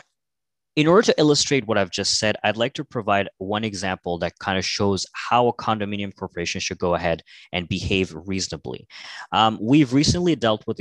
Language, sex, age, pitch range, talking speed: English, male, 20-39, 95-120 Hz, 185 wpm